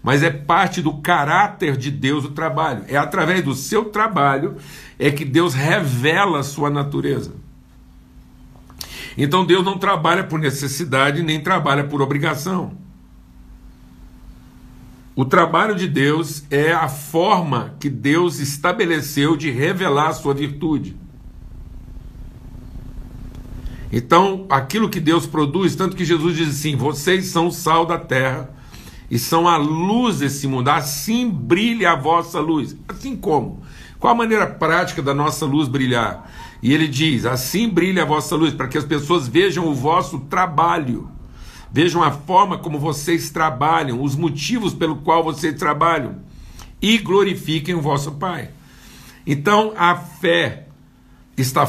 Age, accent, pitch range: 60-79, Brazilian, 140-175 Hz